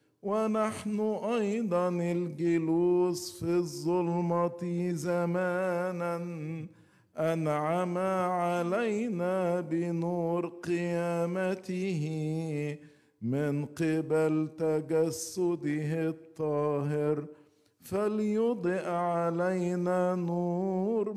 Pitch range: 155-180 Hz